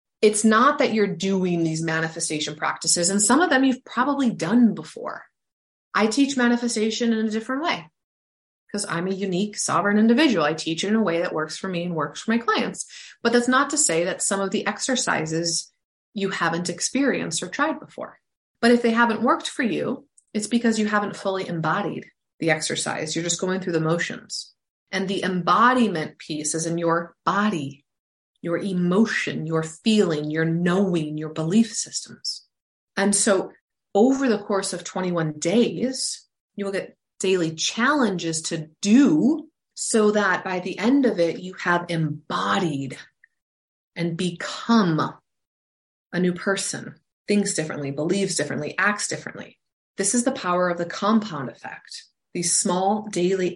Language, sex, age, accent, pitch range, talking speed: English, female, 20-39, American, 165-225 Hz, 160 wpm